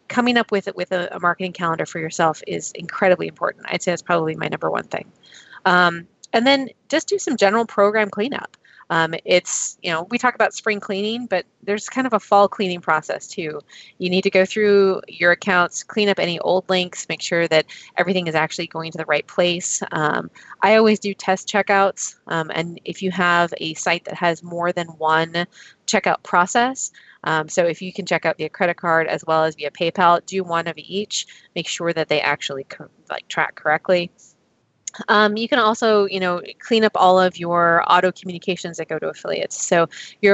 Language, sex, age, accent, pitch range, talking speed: English, female, 20-39, American, 165-205 Hz, 205 wpm